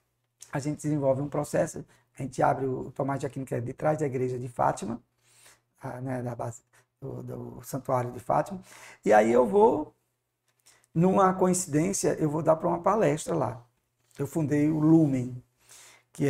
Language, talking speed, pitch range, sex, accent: Portuguese, 175 wpm, 130-170 Hz, male, Brazilian